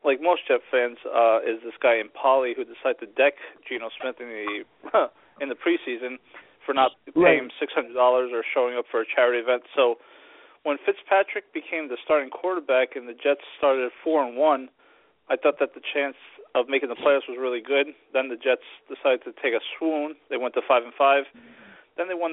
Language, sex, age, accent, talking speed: English, male, 40-59, American, 205 wpm